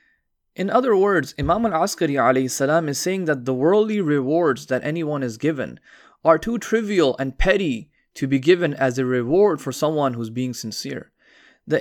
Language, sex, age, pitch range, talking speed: English, male, 20-39, 135-180 Hz, 170 wpm